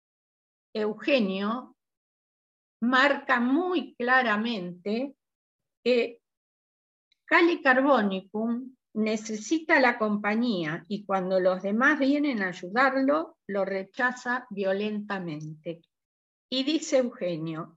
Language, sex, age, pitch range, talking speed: Spanish, female, 50-69, 195-270 Hz, 80 wpm